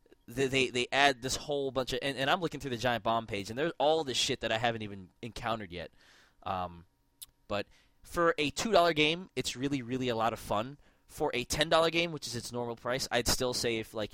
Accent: American